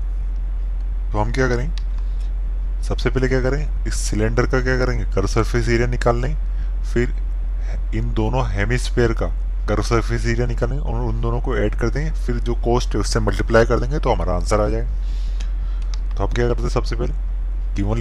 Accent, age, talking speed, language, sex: native, 20-39, 185 wpm, Hindi, male